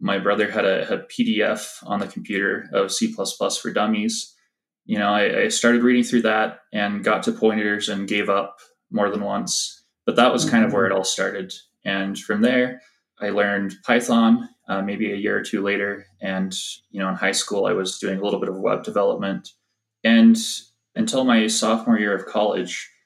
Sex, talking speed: male, 195 wpm